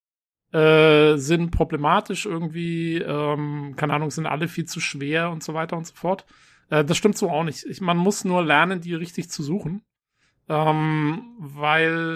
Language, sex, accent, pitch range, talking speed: German, male, German, 150-180 Hz, 175 wpm